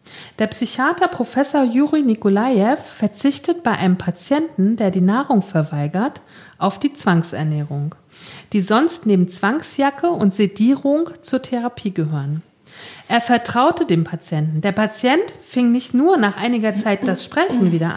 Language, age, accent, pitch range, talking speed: German, 40-59, German, 180-265 Hz, 135 wpm